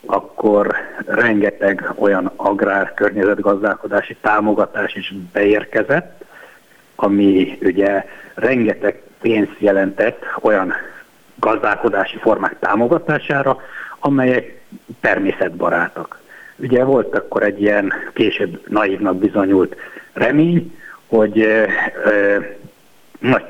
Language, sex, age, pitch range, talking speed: Hungarian, male, 60-79, 100-125 Hz, 75 wpm